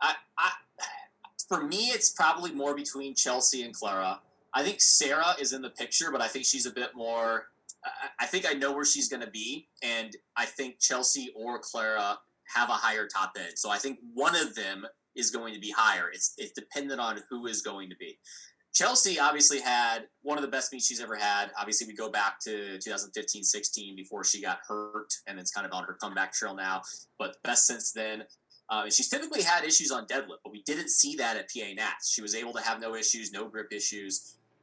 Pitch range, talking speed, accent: 110-140 Hz, 215 wpm, American